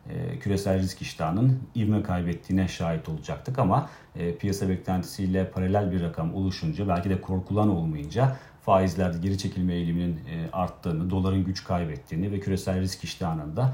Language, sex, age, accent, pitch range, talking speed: Turkish, male, 40-59, native, 90-105 Hz, 130 wpm